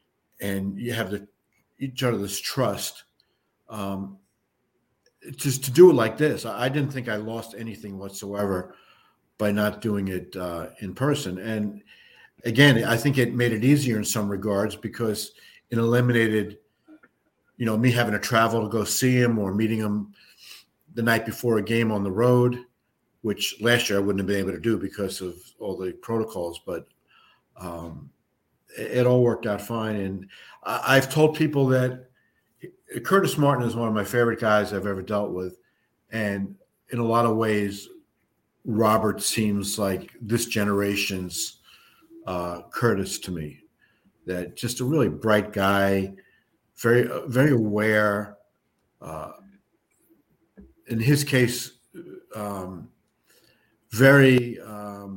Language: English